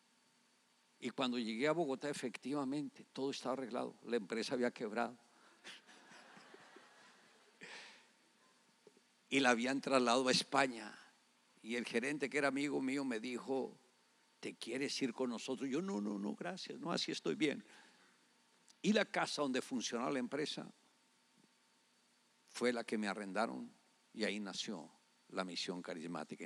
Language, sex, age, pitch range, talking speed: English, male, 60-79, 120-195 Hz, 135 wpm